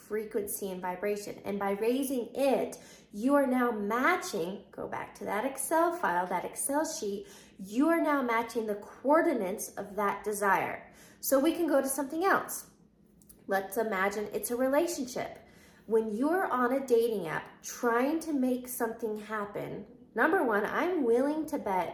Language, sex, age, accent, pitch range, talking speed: English, female, 20-39, American, 220-285 Hz, 160 wpm